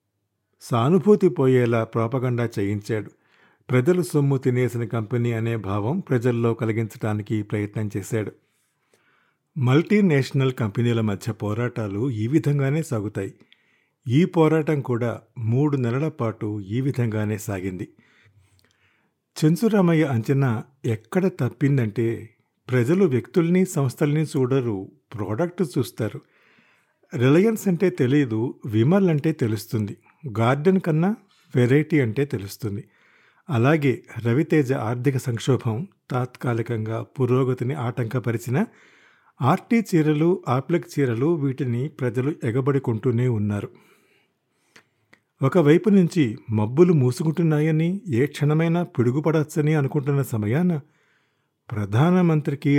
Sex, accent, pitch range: male, native, 115-155 Hz